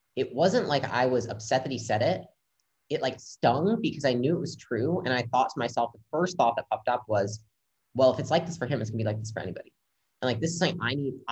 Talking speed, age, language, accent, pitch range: 275 wpm, 30-49, English, American, 110-145 Hz